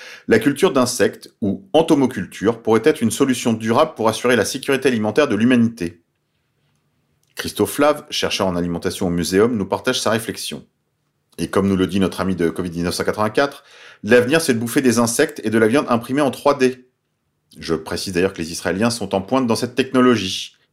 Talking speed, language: 180 wpm, French